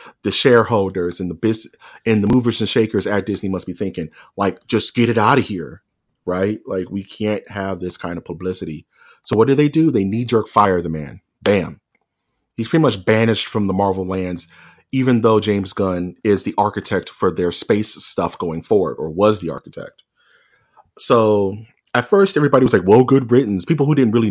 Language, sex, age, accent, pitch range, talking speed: English, male, 30-49, American, 90-115 Hz, 195 wpm